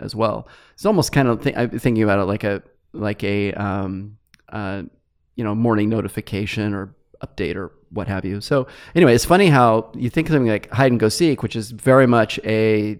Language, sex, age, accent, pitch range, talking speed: English, male, 30-49, American, 105-130 Hz, 210 wpm